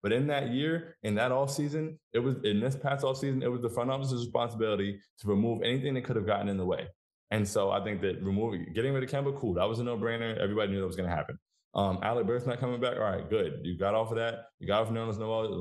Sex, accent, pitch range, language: male, American, 100-120 Hz, English